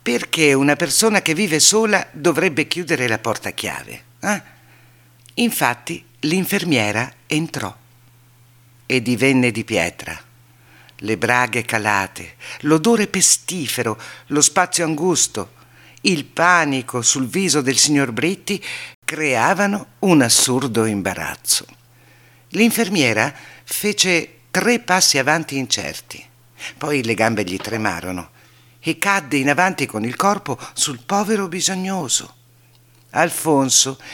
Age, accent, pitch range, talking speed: 50-69, native, 120-170 Hz, 105 wpm